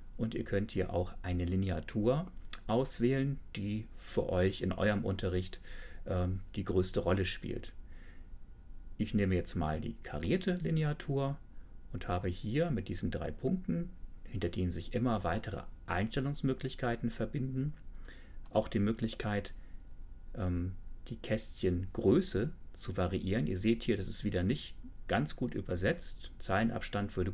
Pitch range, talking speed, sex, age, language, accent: 90-110 Hz, 130 wpm, male, 40-59, German, German